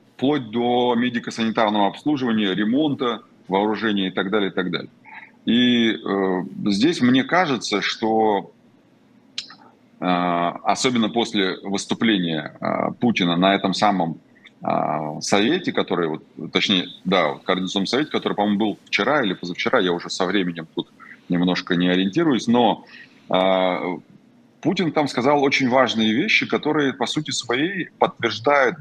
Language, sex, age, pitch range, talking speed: Russian, male, 30-49, 95-130 Hz, 130 wpm